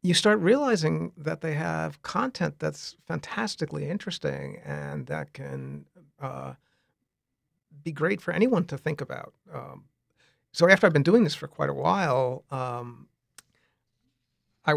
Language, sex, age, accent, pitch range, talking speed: English, male, 50-69, American, 125-165 Hz, 140 wpm